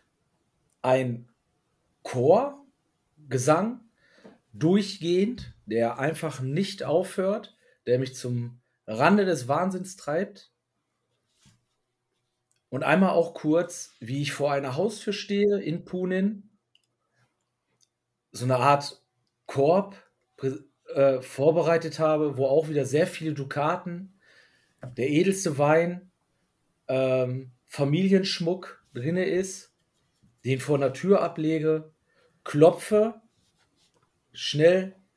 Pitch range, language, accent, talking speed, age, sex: 130-180 Hz, German, German, 90 wpm, 40-59, male